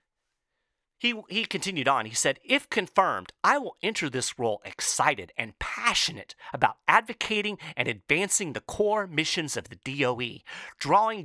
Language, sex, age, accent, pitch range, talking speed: English, male, 40-59, American, 140-220 Hz, 145 wpm